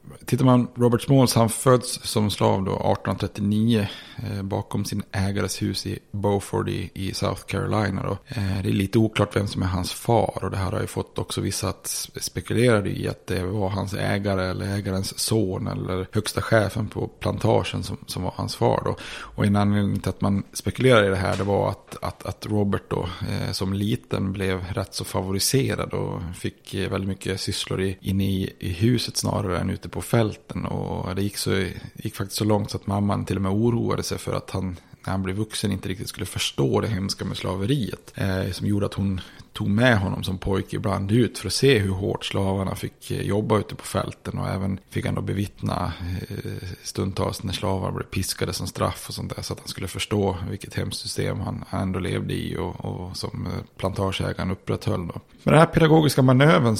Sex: male